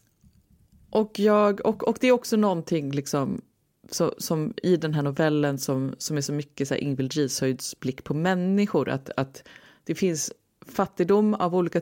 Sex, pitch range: female, 140-185 Hz